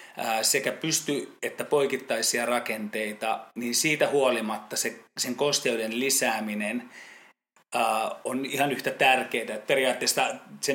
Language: Finnish